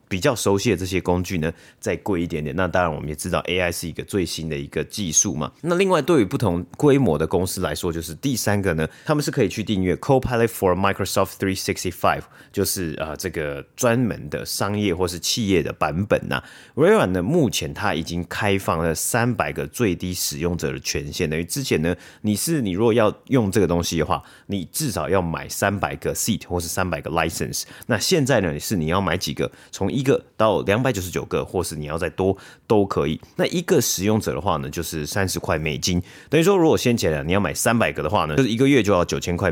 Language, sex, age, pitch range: Chinese, male, 30-49, 80-105 Hz